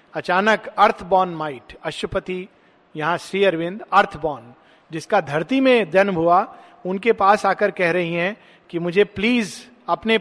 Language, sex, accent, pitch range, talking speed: Hindi, male, native, 170-220 Hz, 135 wpm